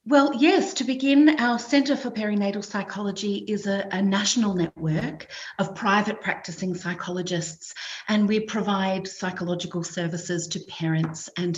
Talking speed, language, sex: 135 wpm, English, female